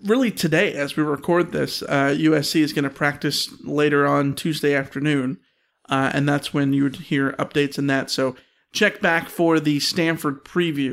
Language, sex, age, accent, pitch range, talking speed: English, male, 40-59, American, 145-205 Hz, 180 wpm